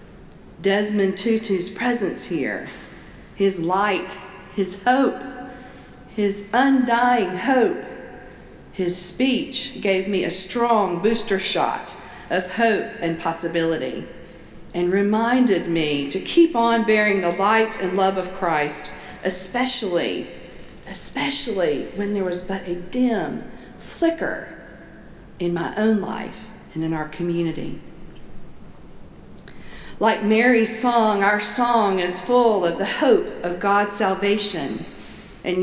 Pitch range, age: 185-235 Hz, 50-69